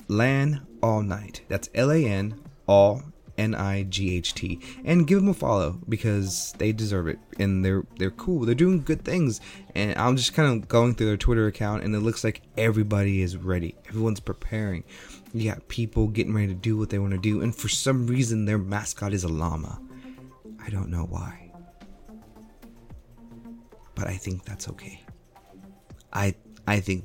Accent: American